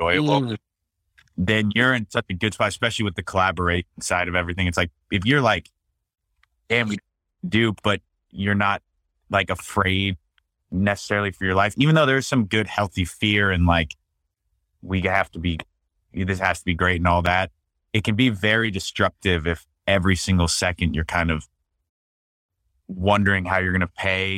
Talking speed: 170 wpm